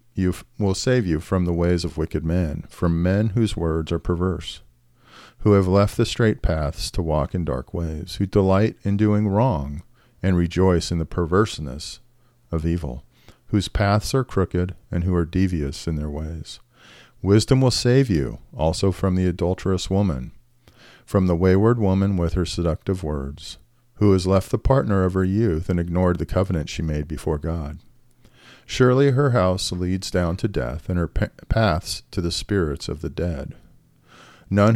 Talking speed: 175 wpm